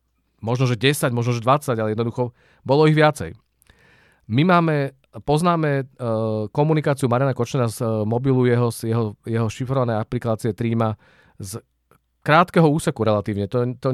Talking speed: 135 wpm